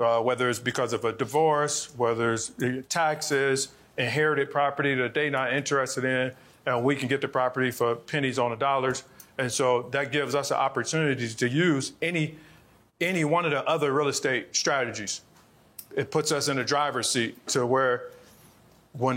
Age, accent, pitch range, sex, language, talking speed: 40-59, American, 130-155 Hz, male, English, 175 wpm